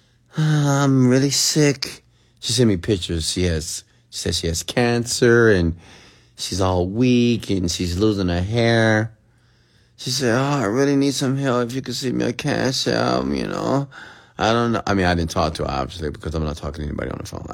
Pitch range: 85-120 Hz